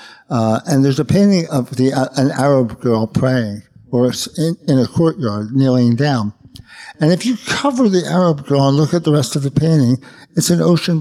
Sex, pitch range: male, 120-155 Hz